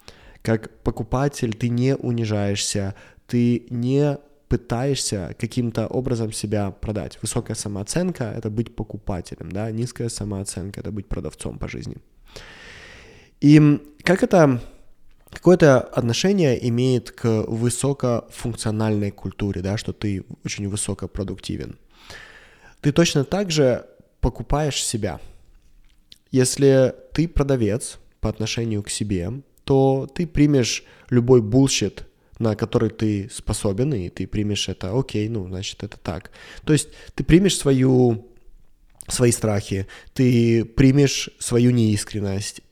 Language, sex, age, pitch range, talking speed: Russian, male, 20-39, 105-135 Hz, 115 wpm